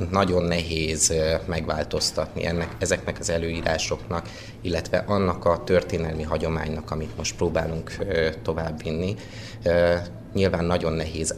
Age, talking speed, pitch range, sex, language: 30-49, 95 wpm, 80-110 Hz, male, Hungarian